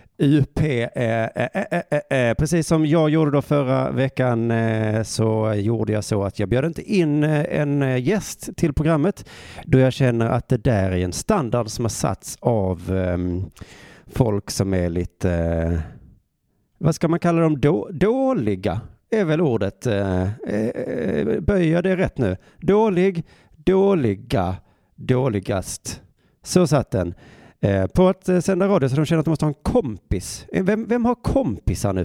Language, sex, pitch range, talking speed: Swedish, male, 100-160 Hz, 140 wpm